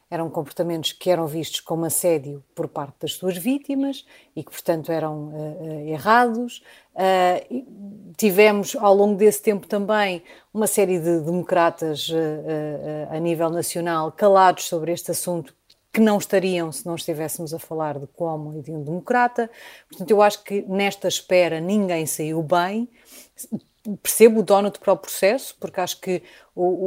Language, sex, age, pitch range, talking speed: Portuguese, female, 30-49, 165-195 Hz, 150 wpm